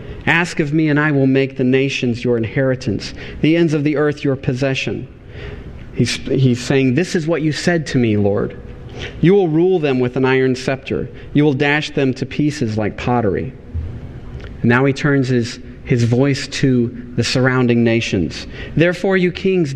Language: English